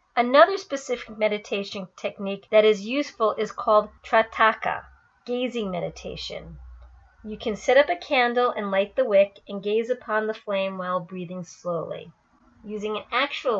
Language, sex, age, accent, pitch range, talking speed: English, female, 40-59, American, 195-240 Hz, 145 wpm